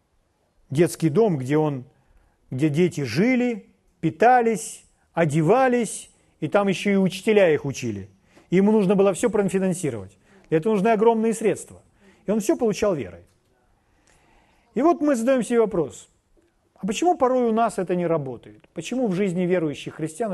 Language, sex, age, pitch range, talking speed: Russian, male, 40-59, 140-215 Hz, 140 wpm